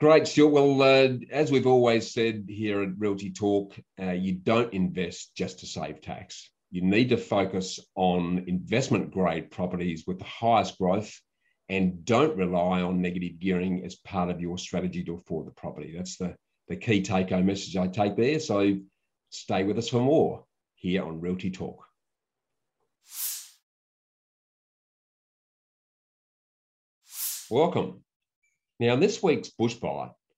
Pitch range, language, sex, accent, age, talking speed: 90-110 Hz, English, male, Australian, 40-59, 140 wpm